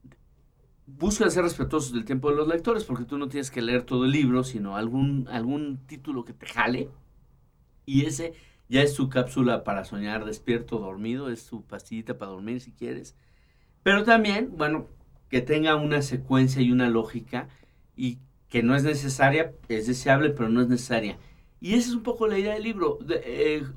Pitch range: 120-165 Hz